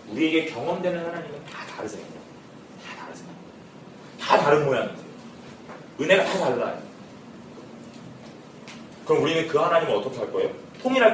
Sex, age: male, 30-49